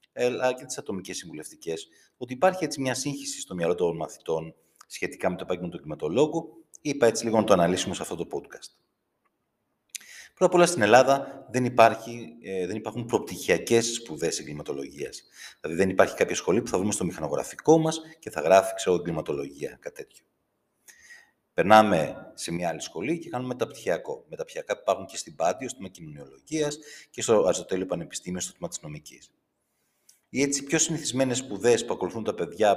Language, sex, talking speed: Greek, male, 170 wpm